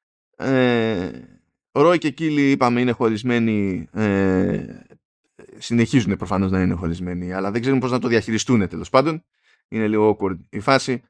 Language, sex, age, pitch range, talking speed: Greek, male, 20-39, 110-150 Hz, 145 wpm